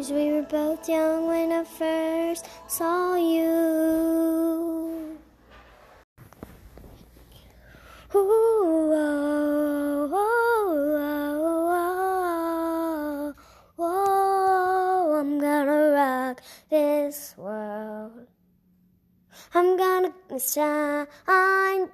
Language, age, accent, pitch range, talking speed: English, 10-29, American, 295-370 Hz, 45 wpm